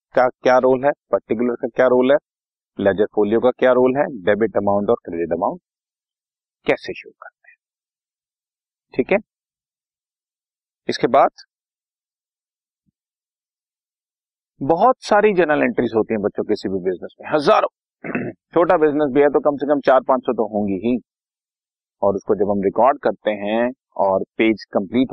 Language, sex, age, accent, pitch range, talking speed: Hindi, male, 40-59, native, 105-135 Hz, 155 wpm